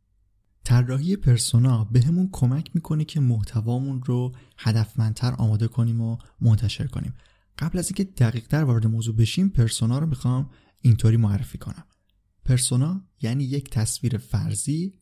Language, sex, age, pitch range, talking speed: Persian, male, 20-39, 110-140 Hz, 130 wpm